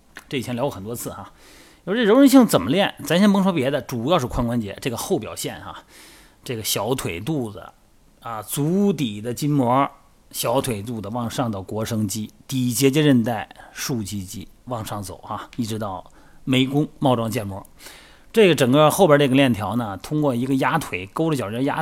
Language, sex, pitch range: Chinese, male, 115-155 Hz